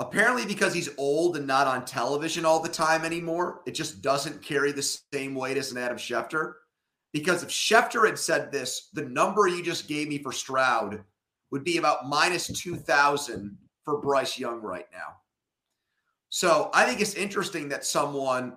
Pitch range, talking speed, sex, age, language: 130-170 Hz, 175 wpm, male, 30-49, English